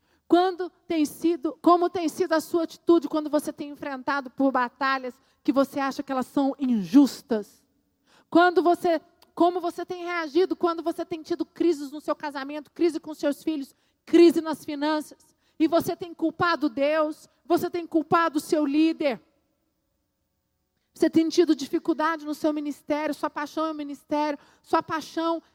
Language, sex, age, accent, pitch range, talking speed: Portuguese, female, 40-59, Brazilian, 300-350 Hz, 150 wpm